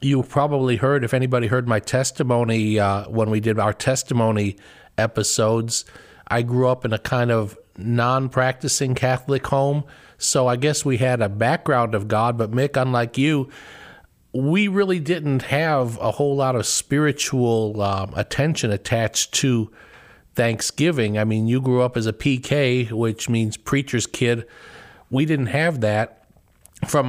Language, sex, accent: English, male, American